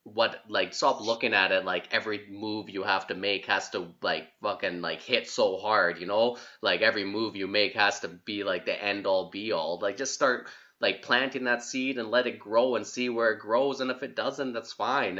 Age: 20-39